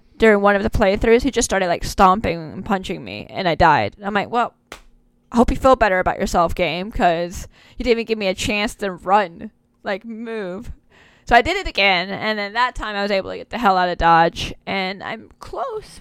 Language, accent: English, American